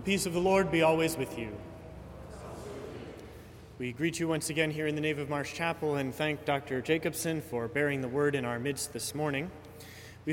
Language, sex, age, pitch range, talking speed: English, male, 30-49, 120-150 Hz, 205 wpm